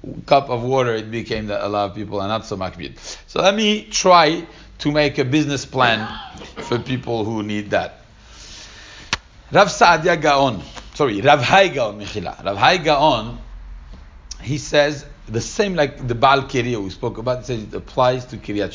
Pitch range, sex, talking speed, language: 105-150 Hz, male, 175 wpm, English